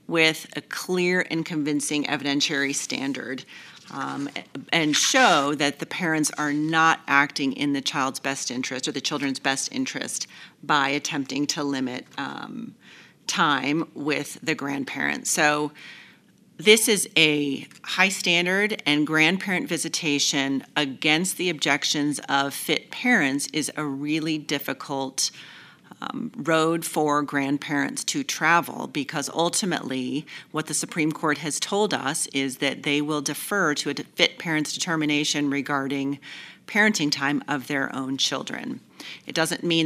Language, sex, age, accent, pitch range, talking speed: English, female, 40-59, American, 140-165 Hz, 135 wpm